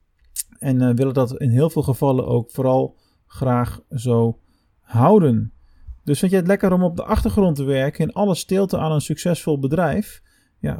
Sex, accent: male, Dutch